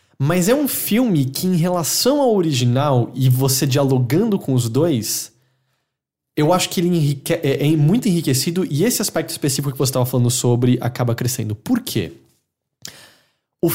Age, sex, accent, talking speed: 20-39, male, Brazilian, 160 wpm